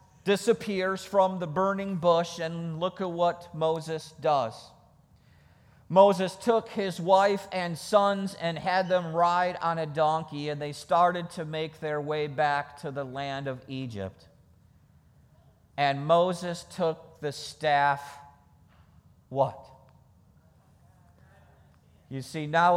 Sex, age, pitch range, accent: male, 50-69, 140-175 Hz, American